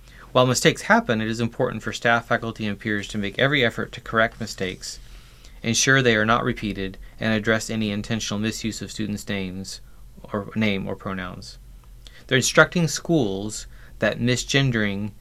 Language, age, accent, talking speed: English, 30-49, American, 160 wpm